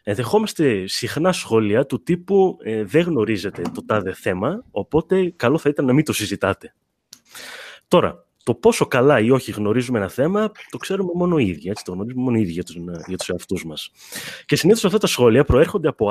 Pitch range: 100-165 Hz